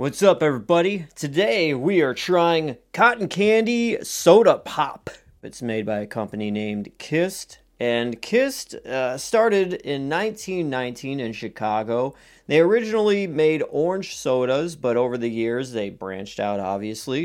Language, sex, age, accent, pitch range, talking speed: English, male, 30-49, American, 120-180 Hz, 135 wpm